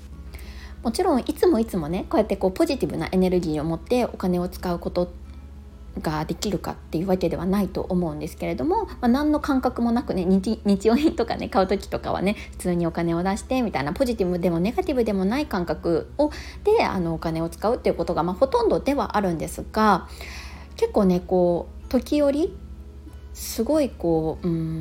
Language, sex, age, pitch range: Japanese, female, 20-39, 170-245 Hz